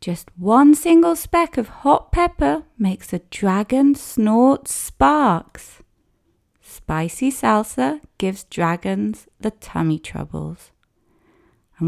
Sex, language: female, English